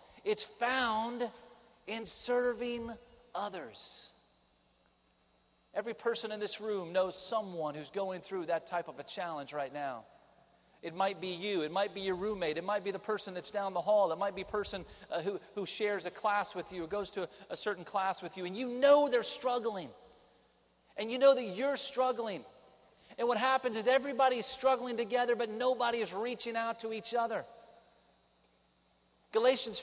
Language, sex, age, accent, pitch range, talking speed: English, male, 40-59, American, 200-250 Hz, 180 wpm